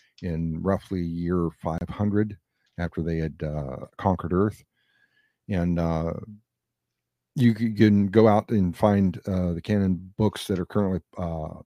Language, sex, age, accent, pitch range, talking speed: English, male, 50-69, American, 85-105 Hz, 135 wpm